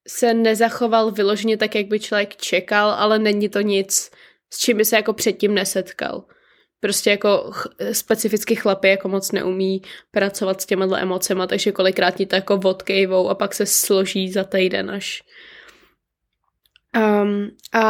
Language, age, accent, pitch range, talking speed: Czech, 20-39, native, 195-220 Hz, 150 wpm